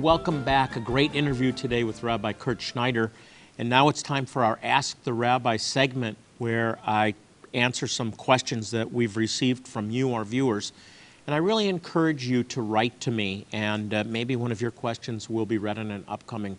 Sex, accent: male, American